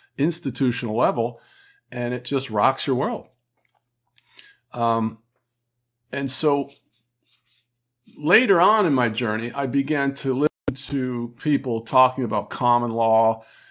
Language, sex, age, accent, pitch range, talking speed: English, male, 50-69, American, 115-145 Hz, 115 wpm